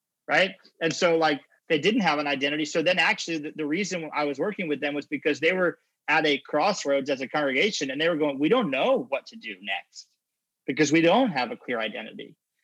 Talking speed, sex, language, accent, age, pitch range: 230 wpm, male, English, American, 30-49, 135-160 Hz